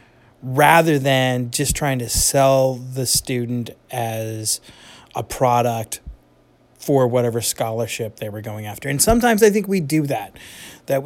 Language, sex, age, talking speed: English, male, 30-49, 140 wpm